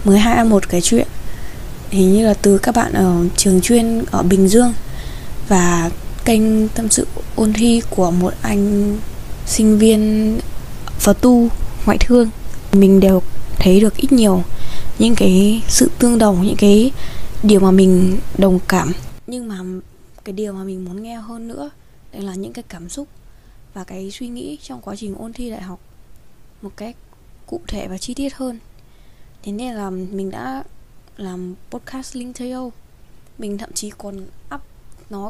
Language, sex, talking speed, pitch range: Vietnamese, female, 165 wpm, 190-230 Hz